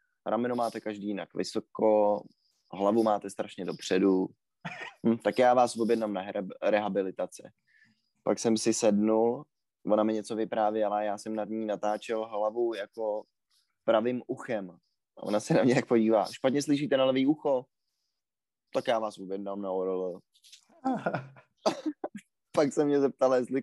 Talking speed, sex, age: 135 wpm, male, 20-39